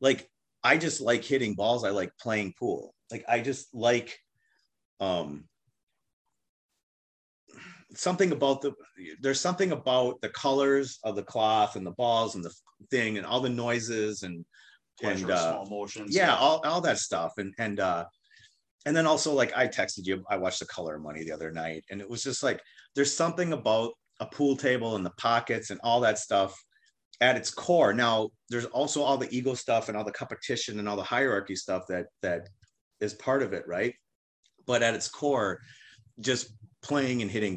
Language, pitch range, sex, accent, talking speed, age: English, 95-130 Hz, male, American, 185 wpm, 30-49